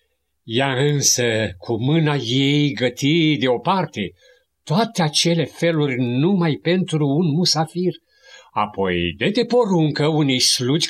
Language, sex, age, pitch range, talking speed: Romanian, male, 50-69, 120-190 Hz, 105 wpm